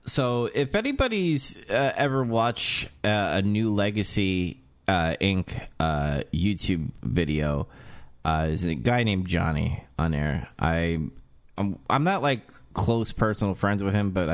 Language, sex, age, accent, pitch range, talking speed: English, male, 30-49, American, 85-105 Hz, 140 wpm